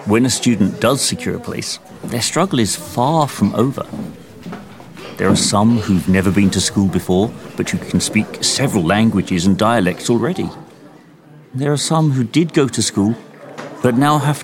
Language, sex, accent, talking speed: English, male, British, 175 wpm